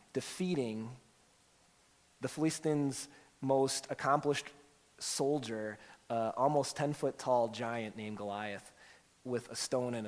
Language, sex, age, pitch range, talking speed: English, male, 30-49, 110-145 Hz, 115 wpm